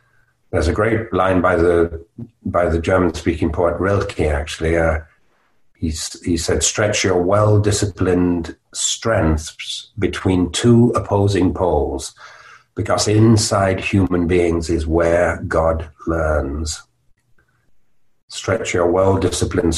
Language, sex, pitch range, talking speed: English, male, 85-95 Hz, 105 wpm